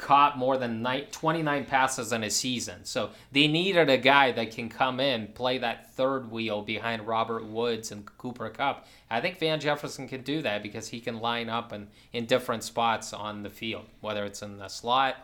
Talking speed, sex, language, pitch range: 200 wpm, male, English, 110-135 Hz